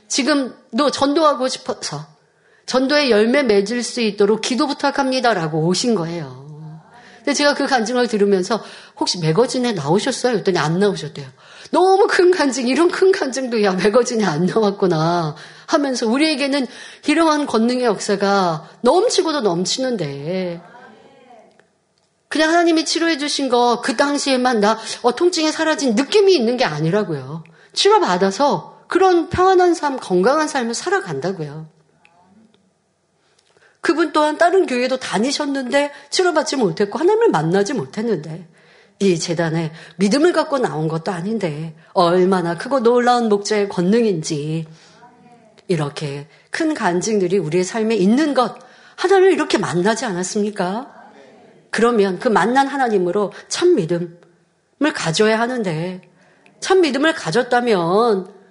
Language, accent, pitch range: Korean, native, 185-285 Hz